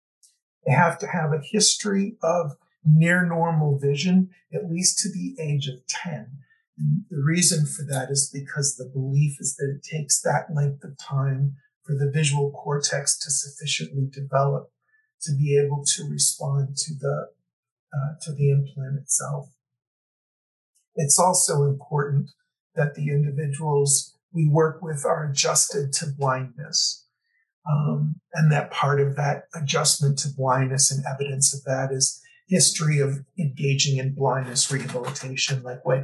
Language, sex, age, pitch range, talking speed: English, male, 50-69, 140-160 Hz, 145 wpm